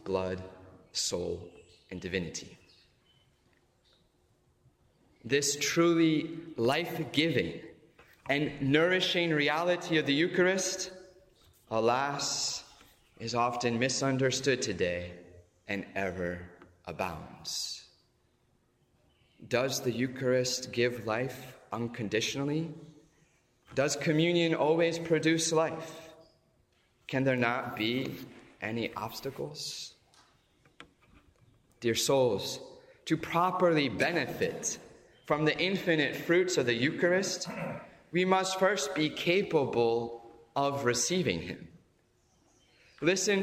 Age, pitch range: 30-49, 120-175 Hz